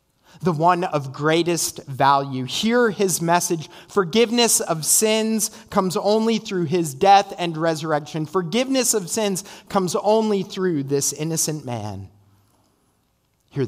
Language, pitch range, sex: English, 130-185 Hz, male